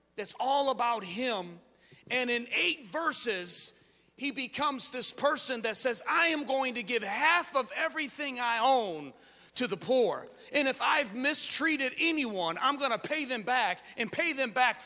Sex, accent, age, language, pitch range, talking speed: male, American, 40-59, English, 225-300 Hz, 170 wpm